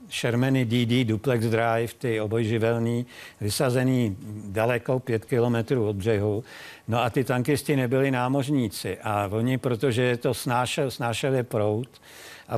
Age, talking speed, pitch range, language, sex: 60-79, 125 wpm, 115-135 Hz, Czech, male